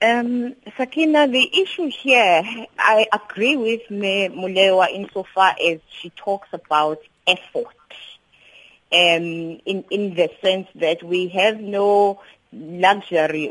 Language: English